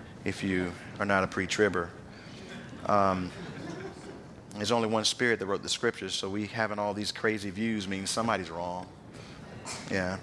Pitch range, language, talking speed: 95-120 Hz, English, 145 wpm